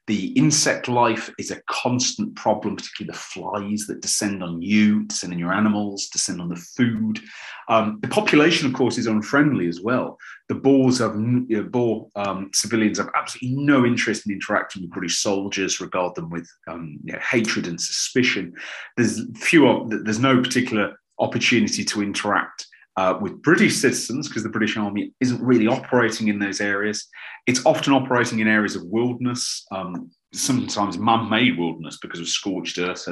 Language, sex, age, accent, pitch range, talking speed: English, male, 30-49, British, 100-130 Hz, 170 wpm